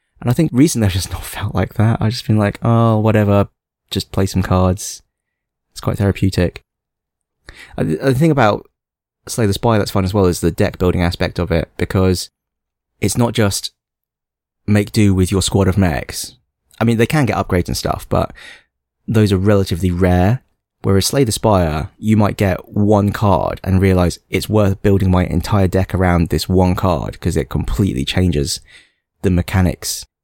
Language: English